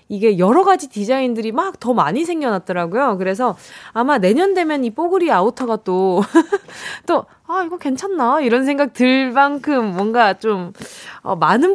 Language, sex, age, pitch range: Korean, female, 20-39, 190-280 Hz